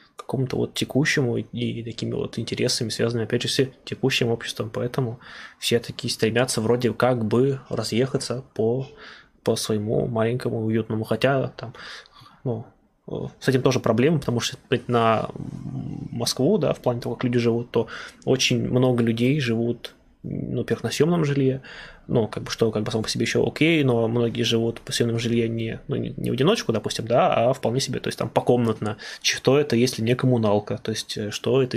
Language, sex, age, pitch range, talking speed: Russian, male, 20-39, 115-130 Hz, 180 wpm